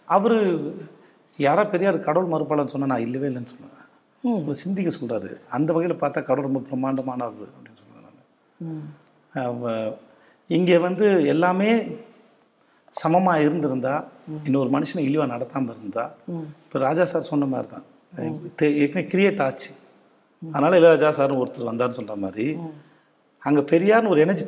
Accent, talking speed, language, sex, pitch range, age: native, 125 wpm, Tamil, male, 140-180 Hz, 40-59